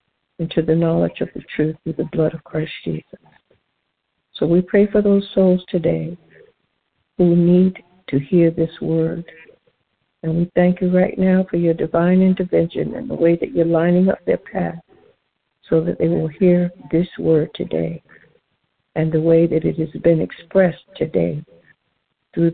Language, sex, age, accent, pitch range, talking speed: English, female, 60-79, American, 160-185 Hz, 165 wpm